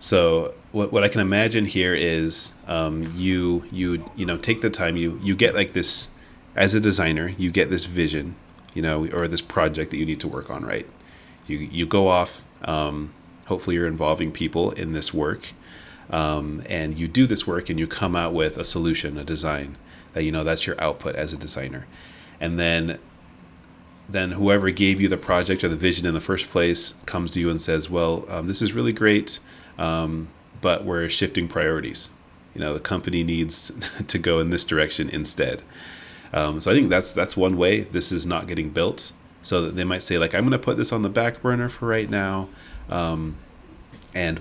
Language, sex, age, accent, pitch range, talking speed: English, male, 30-49, American, 80-95 Hz, 205 wpm